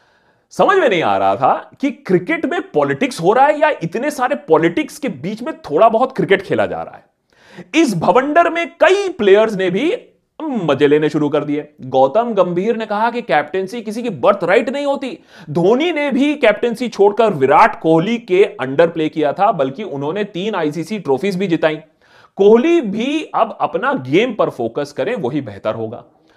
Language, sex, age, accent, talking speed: Hindi, male, 30-49, native, 185 wpm